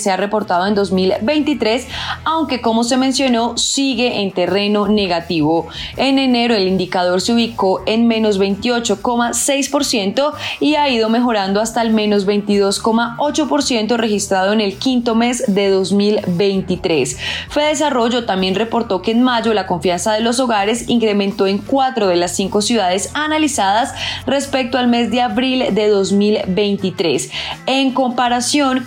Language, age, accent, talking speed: Spanish, 20-39, Colombian, 135 wpm